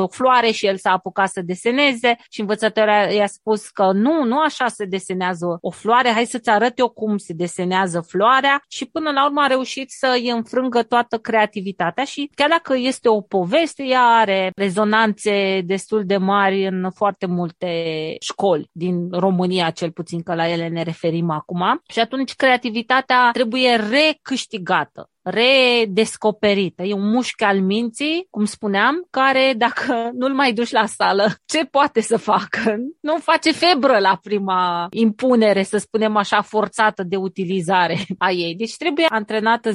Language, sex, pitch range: Romanian, female, 195-250 Hz